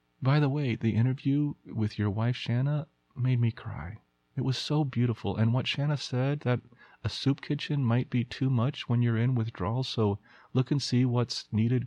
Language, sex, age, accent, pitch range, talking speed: English, male, 40-59, American, 95-130 Hz, 190 wpm